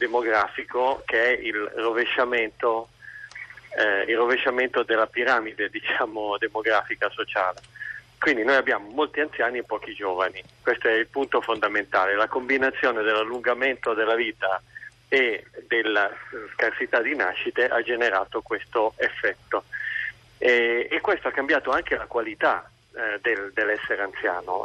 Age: 40-59